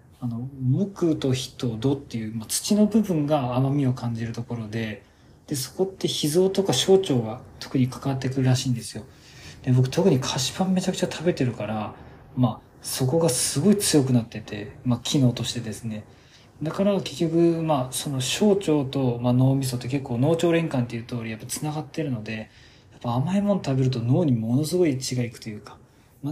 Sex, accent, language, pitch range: male, native, Japanese, 125-155 Hz